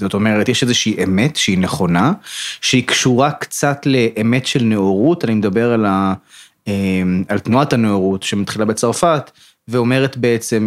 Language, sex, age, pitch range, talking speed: Hebrew, male, 20-39, 105-130 Hz, 135 wpm